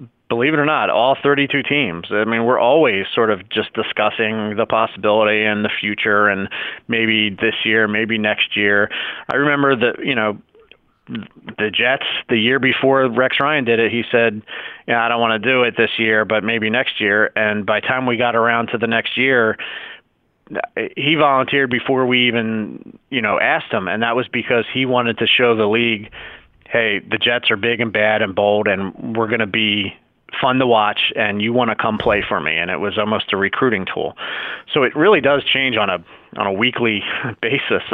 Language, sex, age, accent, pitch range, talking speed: English, male, 30-49, American, 110-125 Hz, 205 wpm